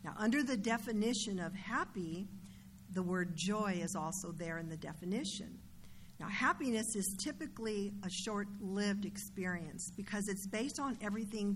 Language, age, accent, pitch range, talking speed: English, 50-69, American, 180-210 Hz, 140 wpm